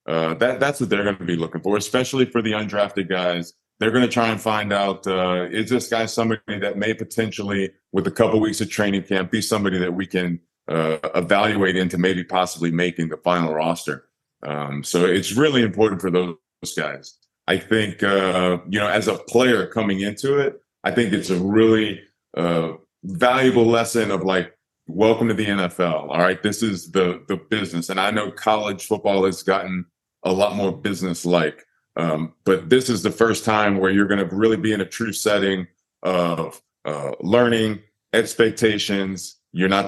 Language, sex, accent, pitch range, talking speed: English, male, American, 90-110 Hz, 190 wpm